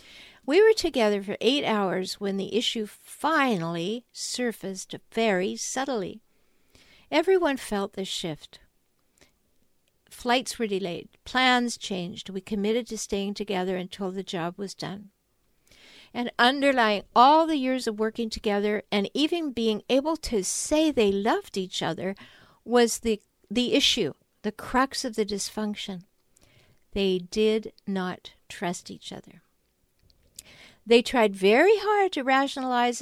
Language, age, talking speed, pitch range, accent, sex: English, 60-79, 130 wpm, 195-245 Hz, American, female